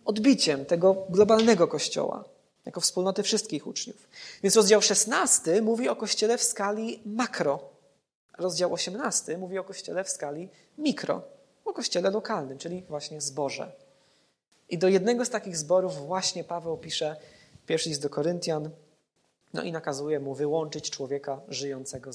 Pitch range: 165-225 Hz